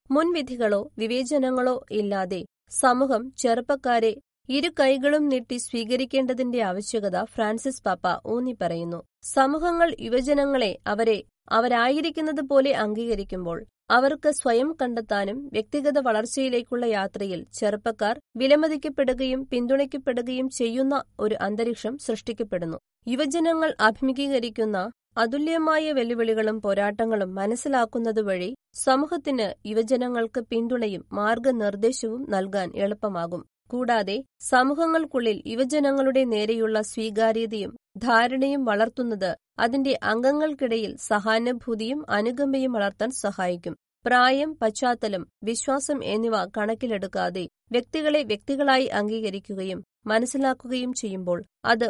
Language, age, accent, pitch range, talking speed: Malayalam, 20-39, native, 215-265 Hz, 80 wpm